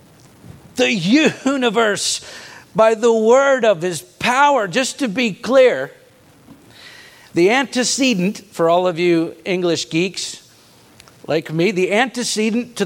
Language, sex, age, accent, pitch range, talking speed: English, male, 50-69, American, 175-230 Hz, 115 wpm